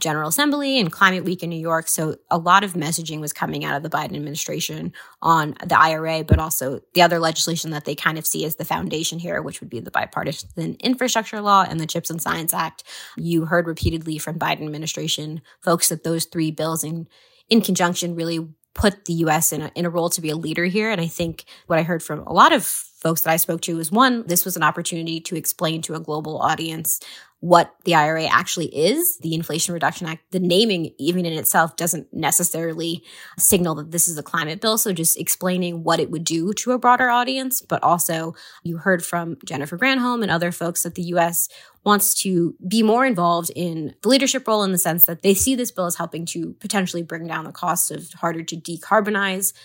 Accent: American